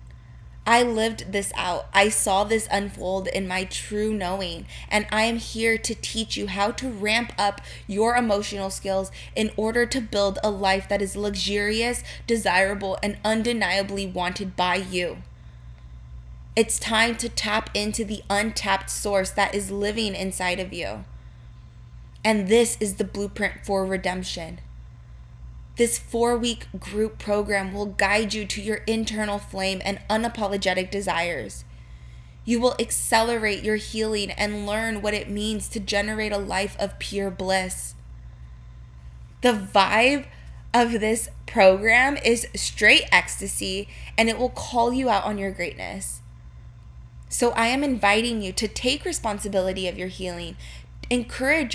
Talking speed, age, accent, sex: 140 wpm, 20-39, American, female